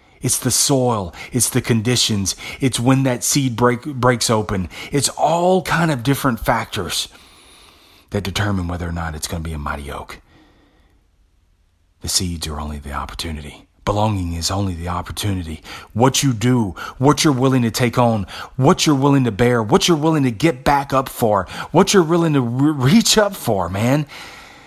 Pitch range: 80-120 Hz